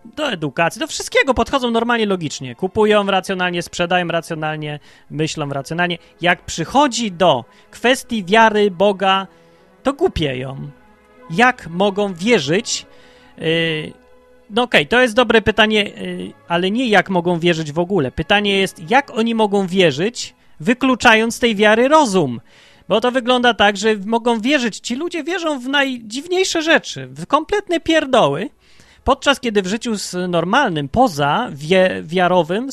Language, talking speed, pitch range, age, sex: Polish, 130 wpm, 165-225 Hz, 30-49, male